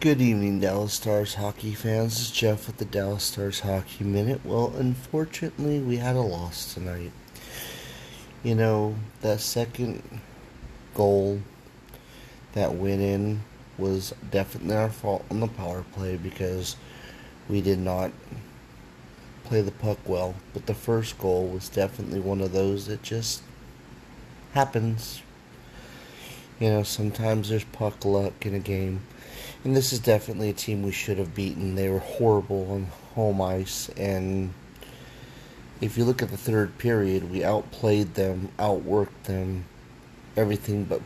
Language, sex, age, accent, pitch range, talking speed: English, male, 30-49, American, 95-115 Hz, 140 wpm